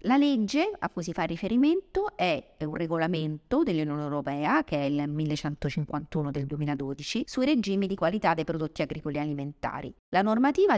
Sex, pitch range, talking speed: female, 145-170 Hz, 155 wpm